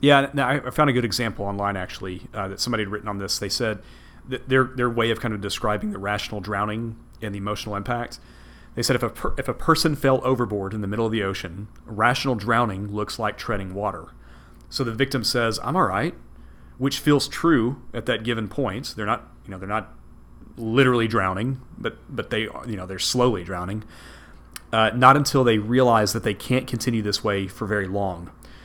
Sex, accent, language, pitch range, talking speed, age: male, American, English, 100-125 Hz, 205 wpm, 40-59